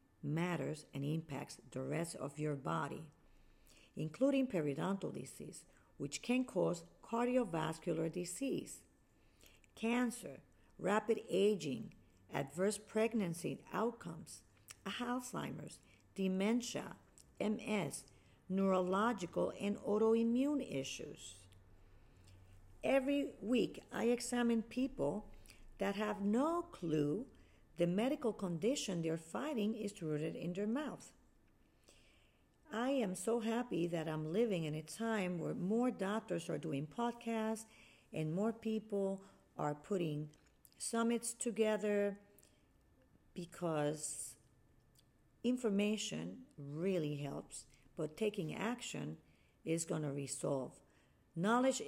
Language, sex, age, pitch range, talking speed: English, female, 50-69, 150-225 Hz, 95 wpm